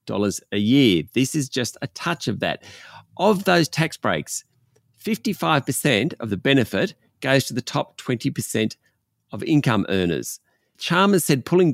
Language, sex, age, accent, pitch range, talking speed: English, male, 40-59, Australian, 110-140 Hz, 150 wpm